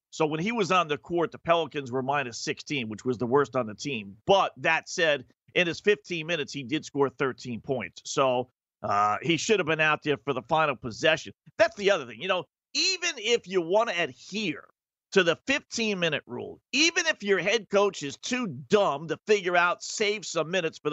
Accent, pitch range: American, 150-225 Hz